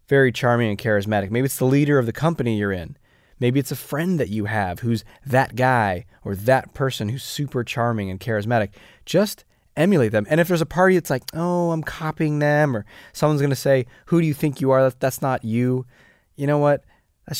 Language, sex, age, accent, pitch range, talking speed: English, male, 20-39, American, 110-145 Hz, 215 wpm